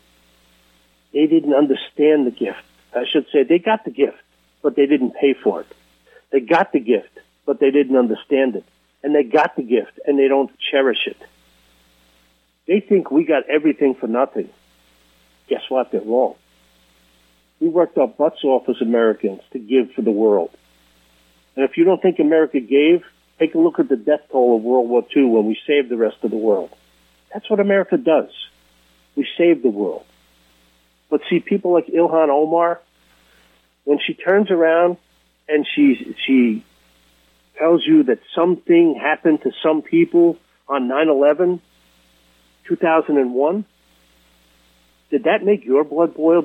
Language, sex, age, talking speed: English, male, 50-69, 160 wpm